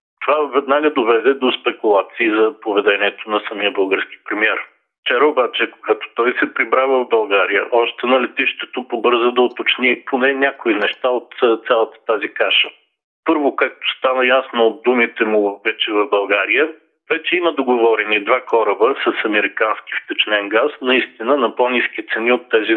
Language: Bulgarian